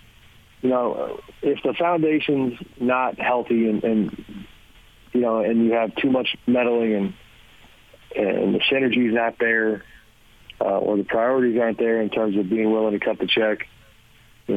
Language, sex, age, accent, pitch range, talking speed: English, male, 40-59, American, 105-115 Hz, 160 wpm